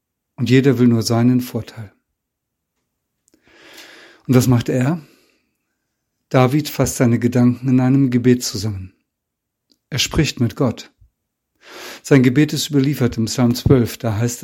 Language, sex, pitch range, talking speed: German, male, 120-135 Hz, 130 wpm